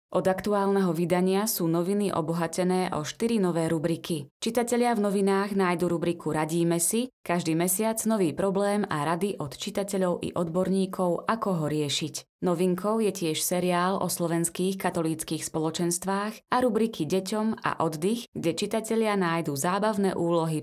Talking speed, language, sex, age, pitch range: 140 wpm, Slovak, female, 20-39, 170-205 Hz